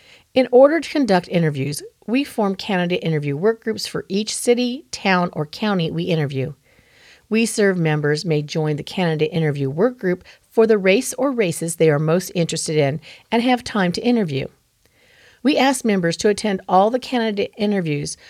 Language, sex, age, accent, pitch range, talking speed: English, female, 40-59, American, 165-235 Hz, 165 wpm